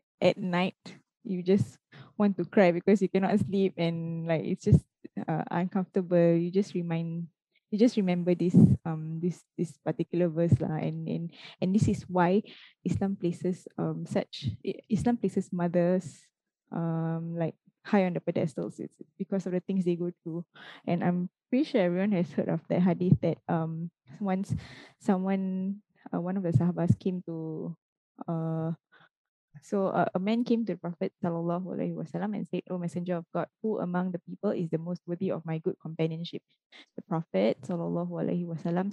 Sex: female